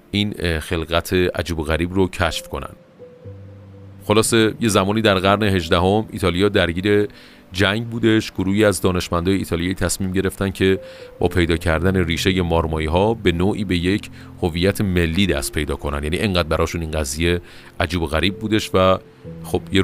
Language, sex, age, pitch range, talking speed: Persian, male, 40-59, 85-110 Hz, 155 wpm